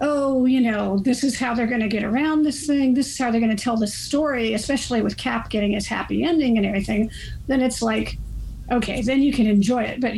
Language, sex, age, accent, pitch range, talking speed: English, female, 50-69, American, 210-270 Hz, 230 wpm